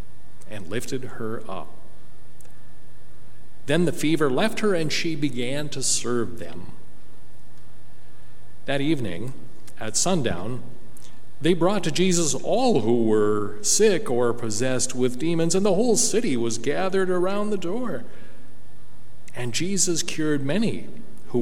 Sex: male